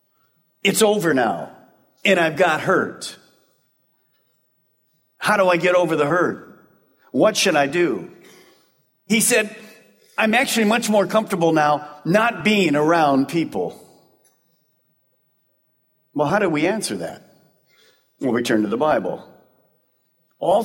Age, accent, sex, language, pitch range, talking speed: 50-69, American, male, English, 155-220 Hz, 125 wpm